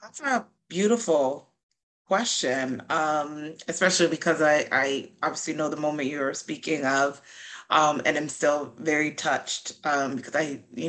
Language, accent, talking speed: English, American, 145 wpm